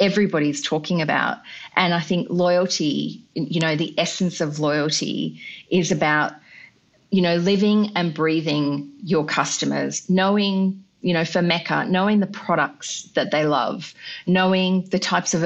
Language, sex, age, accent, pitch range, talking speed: English, female, 30-49, Australian, 150-190 Hz, 145 wpm